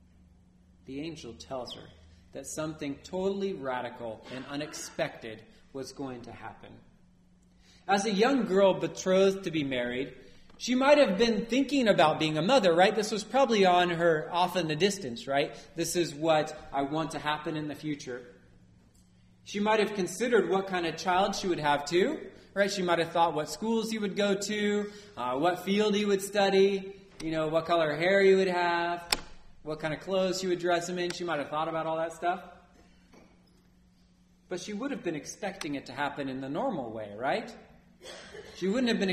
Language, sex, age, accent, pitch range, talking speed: English, male, 30-49, American, 135-195 Hz, 190 wpm